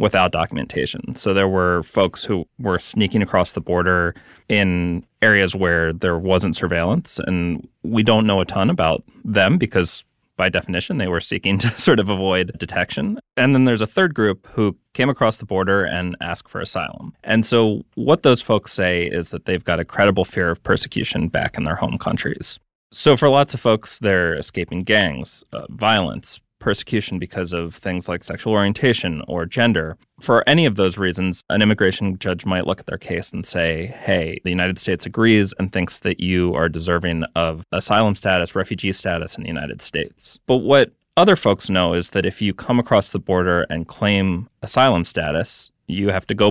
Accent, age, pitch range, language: American, 30-49, 90-110 Hz, English